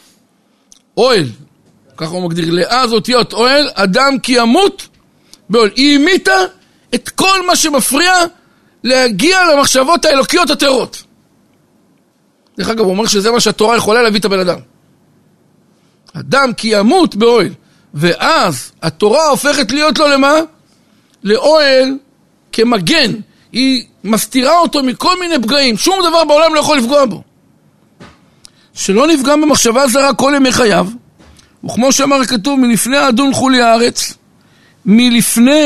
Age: 60-79